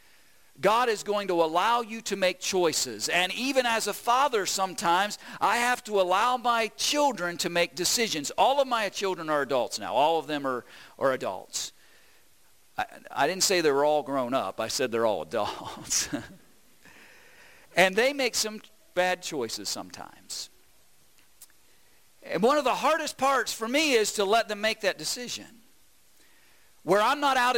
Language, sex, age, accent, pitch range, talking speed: English, male, 50-69, American, 185-245 Hz, 170 wpm